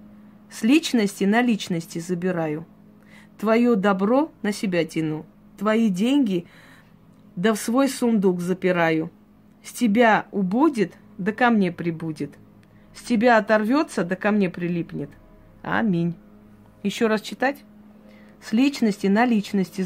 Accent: native